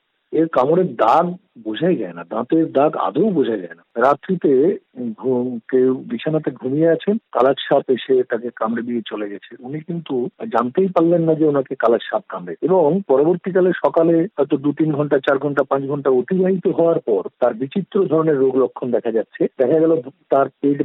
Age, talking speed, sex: 50-69, 155 wpm, male